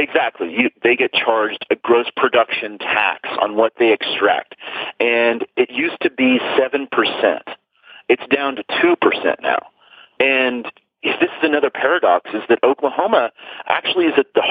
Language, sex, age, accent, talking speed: English, male, 40-59, American, 145 wpm